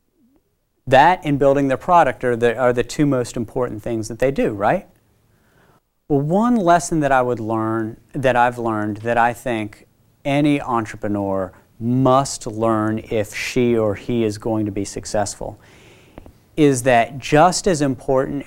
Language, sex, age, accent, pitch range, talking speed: English, male, 40-59, American, 110-140 Hz, 155 wpm